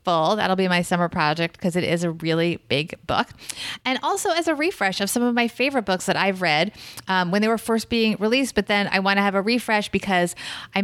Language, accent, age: English, American, 30-49